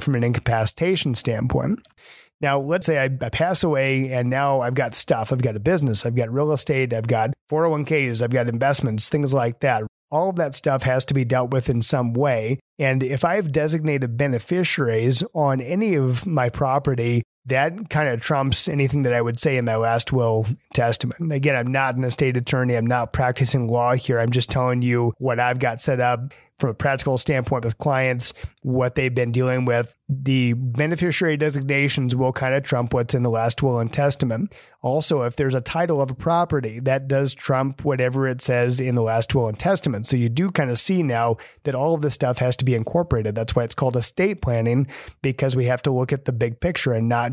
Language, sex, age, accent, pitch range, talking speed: English, male, 30-49, American, 120-145 Hz, 210 wpm